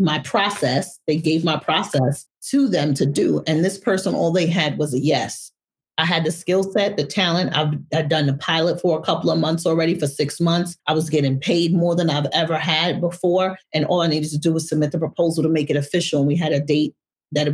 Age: 30-49